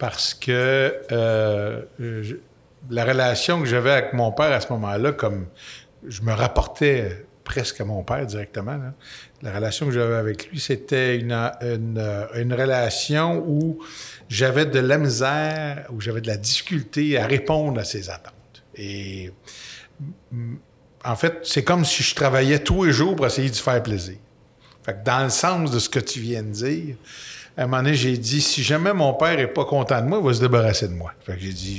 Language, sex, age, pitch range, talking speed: French, male, 50-69, 115-145 Hz, 195 wpm